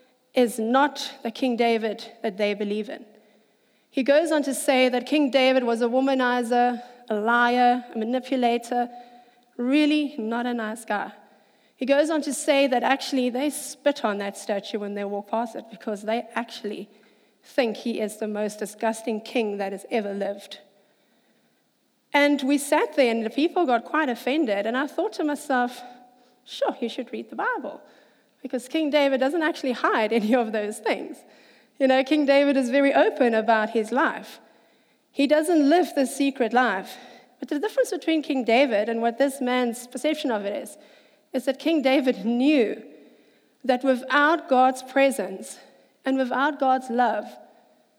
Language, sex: English, female